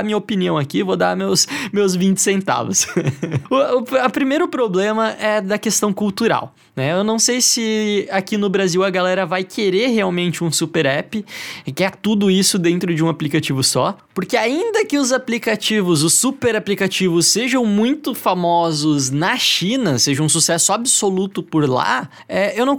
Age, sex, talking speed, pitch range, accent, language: 20-39, male, 175 wpm, 170-235 Hz, Brazilian, Portuguese